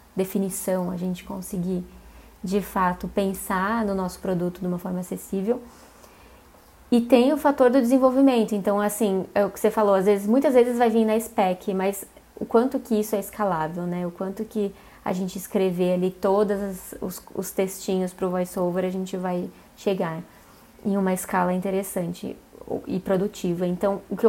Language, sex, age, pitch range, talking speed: Portuguese, female, 20-39, 190-220 Hz, 175 wpm